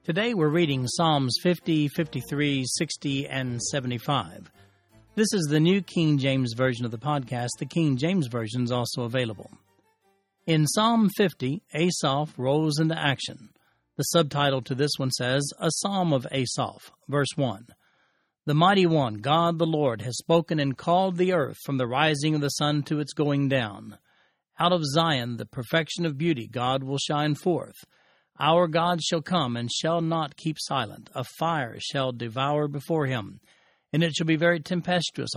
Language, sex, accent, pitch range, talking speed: English, male, American, 135-175 Hz, 170 wpm